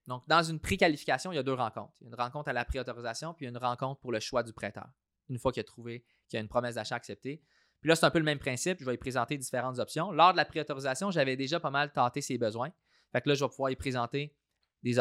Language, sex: French, male